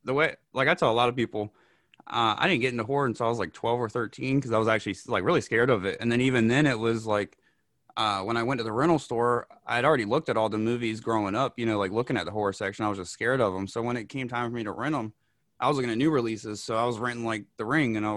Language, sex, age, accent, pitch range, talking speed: English, male, 20-39, American, 105-125 Hz, 310 wpm